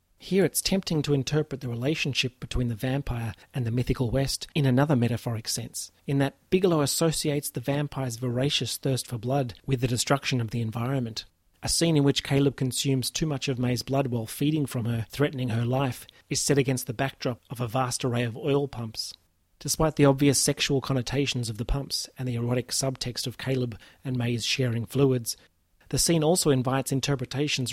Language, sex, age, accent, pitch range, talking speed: English, male, 30-49, Australian, 120-140 Hz, 190 wpm